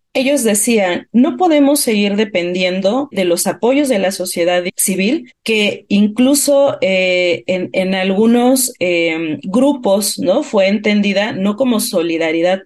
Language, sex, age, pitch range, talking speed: Spanish, female, 40-59, 190-255 Hz, 130 wpm